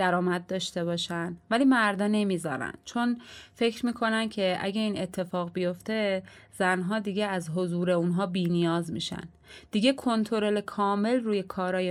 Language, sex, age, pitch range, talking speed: Persian, female, 30-49, 175-220 Hz, 135 wpm